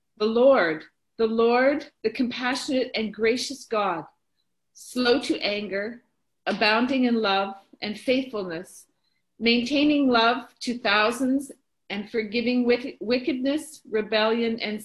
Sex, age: female, 40-59